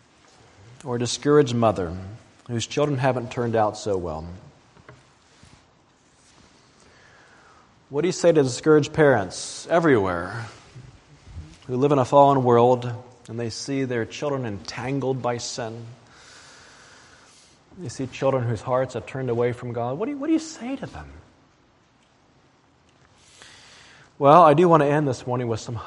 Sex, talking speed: male, 140 wpm